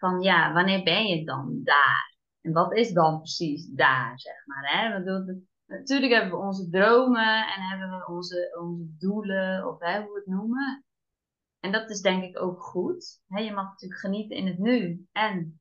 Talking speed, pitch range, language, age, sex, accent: 190 wpm, 185-235 Hz, Dutch, 20-39, female, Dutch